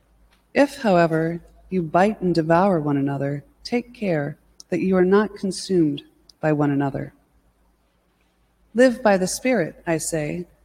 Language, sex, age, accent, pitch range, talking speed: English, female, 30-49, American, 150-215 Hz, 135 wpm